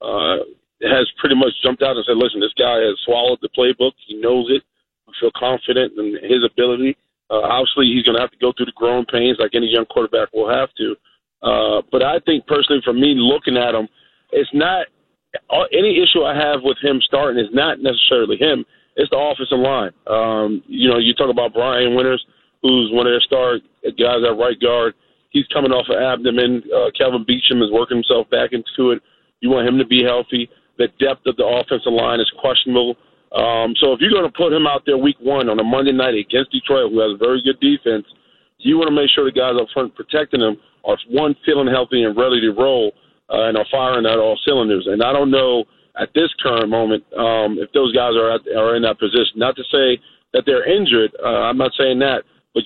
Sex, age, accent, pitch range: male, 40-59, American, 115-135 Hz